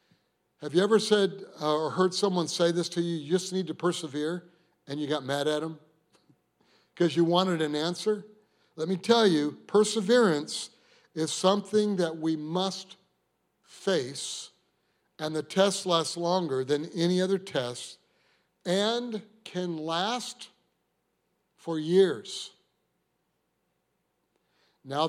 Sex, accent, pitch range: male, American, 155-195 Hz